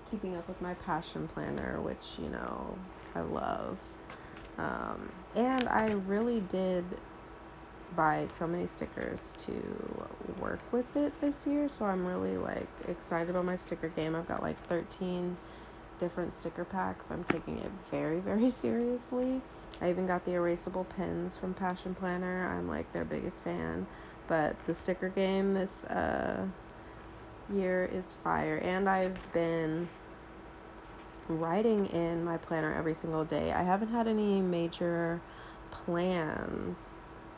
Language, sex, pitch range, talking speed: English, female, 155-190 Hz, 140 wpm